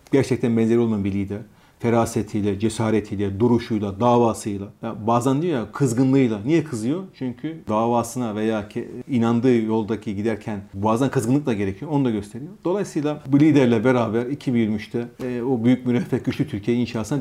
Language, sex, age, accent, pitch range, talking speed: Turkish, male, 40-59, native, 110-135 Hz, 140 wpm